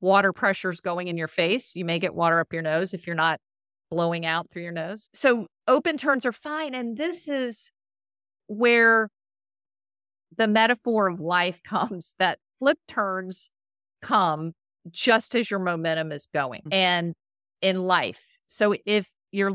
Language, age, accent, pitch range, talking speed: English, 50-69, American, 170-220 Hz, 155 wpm